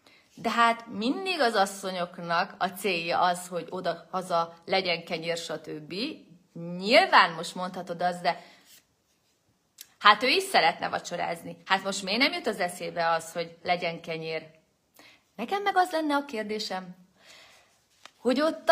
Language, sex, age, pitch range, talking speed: Hungarian, female, 30-49, 175-290 Hz, 135 wpm